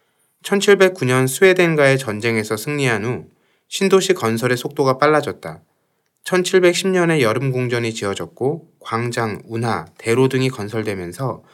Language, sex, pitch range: Korean, male, 115-160 Hz